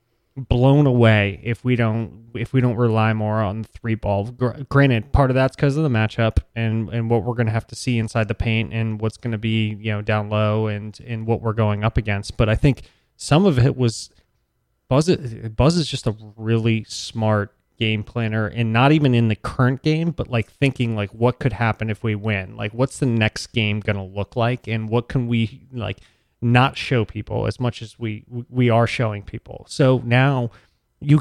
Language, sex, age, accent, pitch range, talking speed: English, male, 20-39, American, 110-125 Hz, 210 wpm